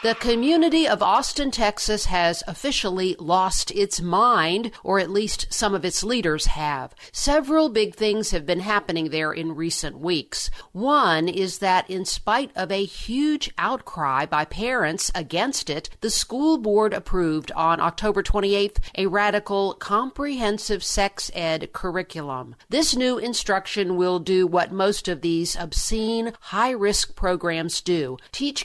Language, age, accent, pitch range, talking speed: English, 50-69, American, 175-220 Hz, 140 wpm